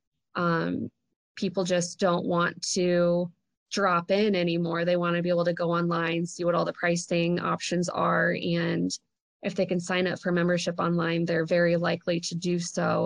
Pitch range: 170-185 Hz